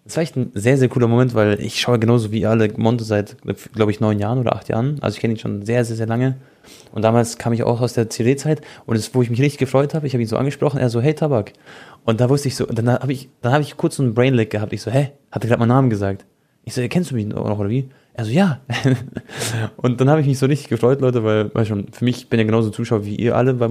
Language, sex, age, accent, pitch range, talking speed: German, male, 20-39, German, 110-125 Hz, 300 wpm